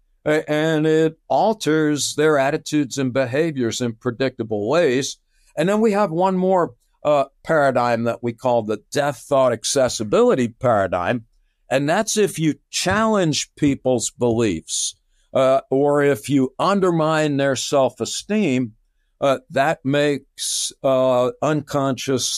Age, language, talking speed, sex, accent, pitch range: 60-79, English, 120 wpm, male, American, 120-150 Hz